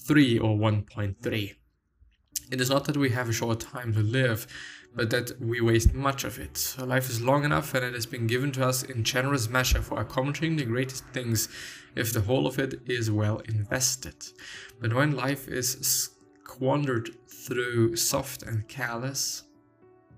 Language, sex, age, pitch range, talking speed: English, male, 20-39, 110-130 Hz, 165 wpm